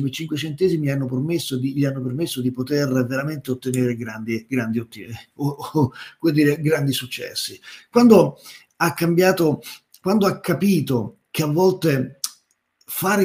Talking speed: 150 wpm